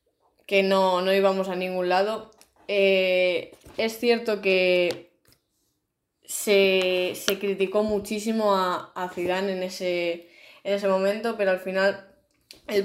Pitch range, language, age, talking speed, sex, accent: 180-205 Hz, Spanish, 20-39, 120 wpm, female, Spanish